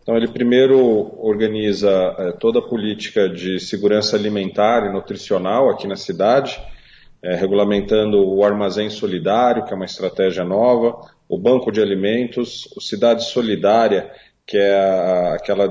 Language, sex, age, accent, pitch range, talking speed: Portuguese, male, 40-59, Brazilian, 100-120 Hz, 130 wpm